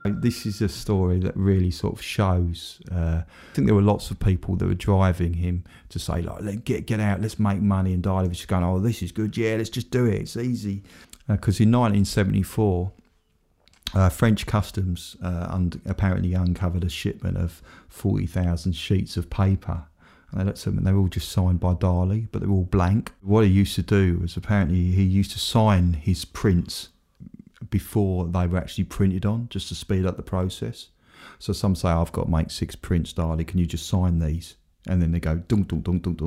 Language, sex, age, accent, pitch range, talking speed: English, male, 30-49, British, 85-100 Hz, 210 wpm